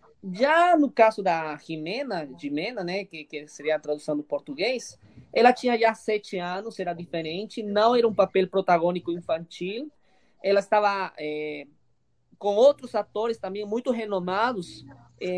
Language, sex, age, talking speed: Portuguese, male, 20-39, 150 wpm